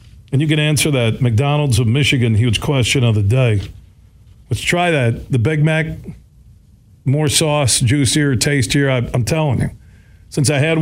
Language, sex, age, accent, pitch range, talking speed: English, male, 40-59, American, 110-155 Hz, 160 wpm